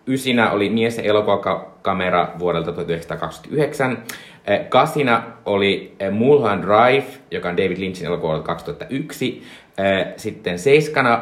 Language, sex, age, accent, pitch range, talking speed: Finnish, male, 30-49, native, 95-120 Hz, 105 wpm